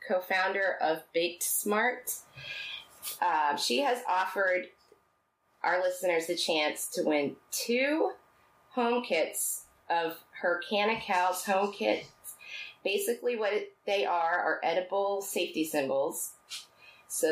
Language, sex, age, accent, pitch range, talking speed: English, female, 30-49, American, 175-260 Hz, 115 wpm